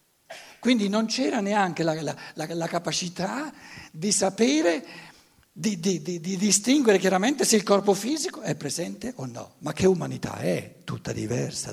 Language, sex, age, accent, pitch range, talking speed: Italian, male, 60-79, native, 150-235 Hz, 145 wpm